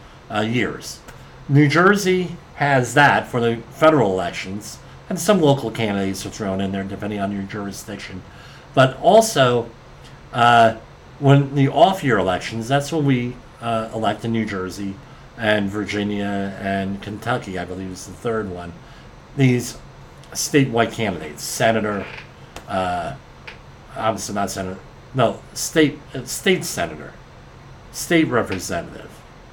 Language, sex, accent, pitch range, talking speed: English, male, American, 105-145 Hz, 125 wpm